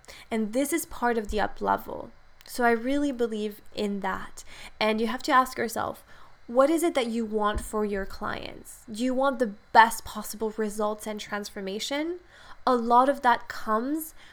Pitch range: 205-240 Hz